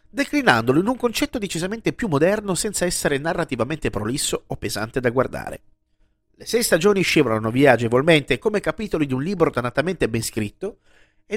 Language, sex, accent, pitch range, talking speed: Italian, male, native, 120-190 Hz, 160 wpm